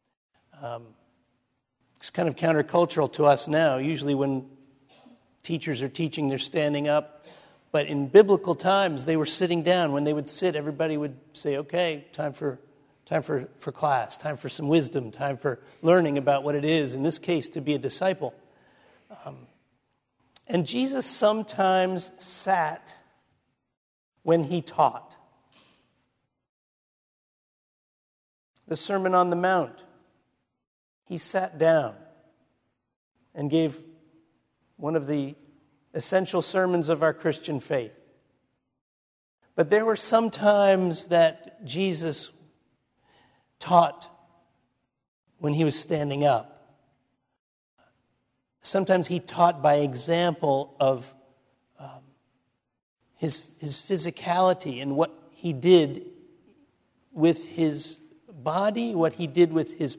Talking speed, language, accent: 120 wpm, English, American